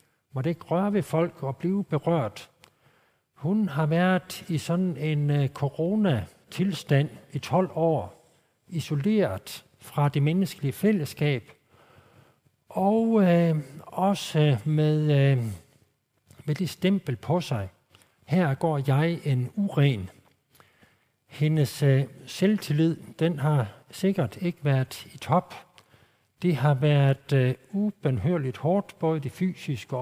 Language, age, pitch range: Danish, 60-79, 135-170 Hz